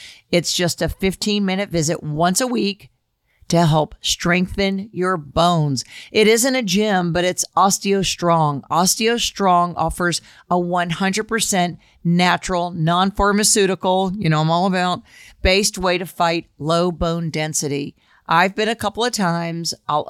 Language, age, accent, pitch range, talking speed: English, 50-69, American, 170-200 Hz, 135 wpm